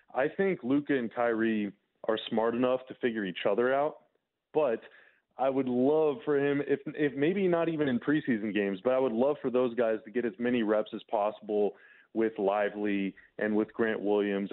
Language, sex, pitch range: English, male, 105-135 Hz